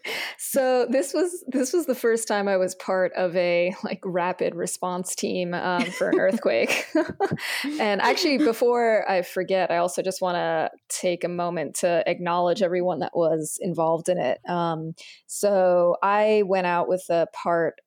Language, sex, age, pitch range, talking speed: English, female, 20-39, 170-200 Hz, 170 wpm